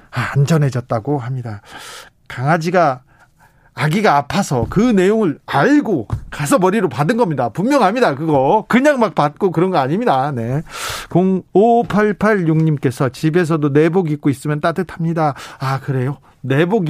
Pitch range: 145-200 Hz